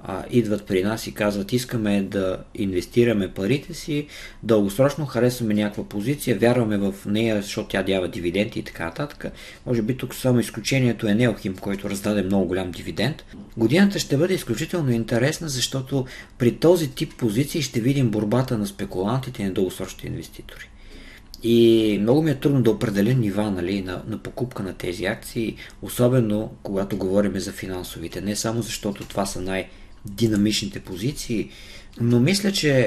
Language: Bulgarian